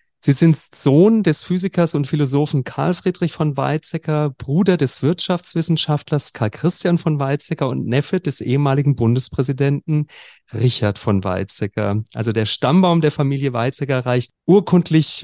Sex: male